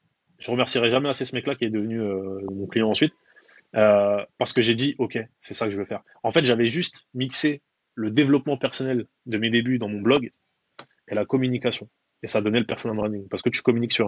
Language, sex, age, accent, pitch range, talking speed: French, male, 20-39, French, 105-125 Hz, 230 wpm